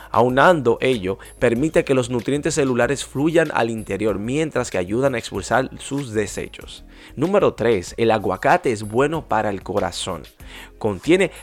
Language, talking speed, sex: Spanish, 140 wpm, male